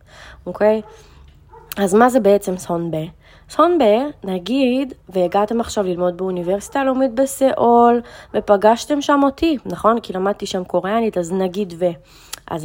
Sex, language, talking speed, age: female, Hebrew, 130 wpm, 20-39